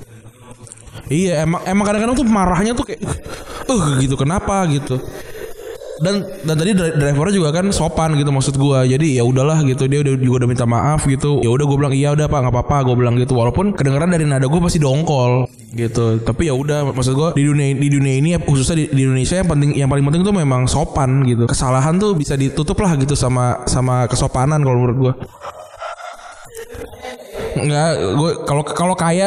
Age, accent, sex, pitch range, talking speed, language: 20-39, native, male, 130-170 Hz, 190 wpm, Indonesian